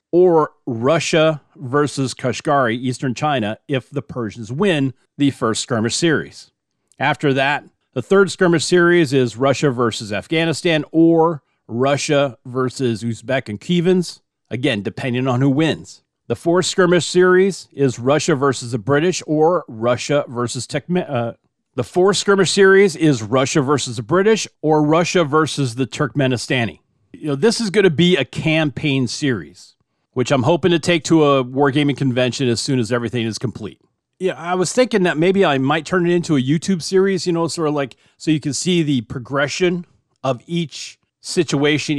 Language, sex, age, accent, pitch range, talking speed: English, male, 40-59, American, 125-170 Hz, 165 wpm